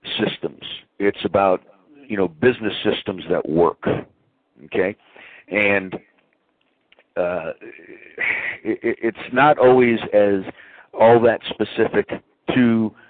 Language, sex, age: English, male, 60-79